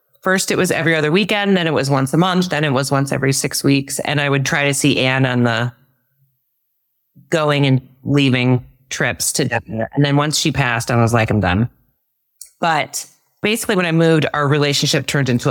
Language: English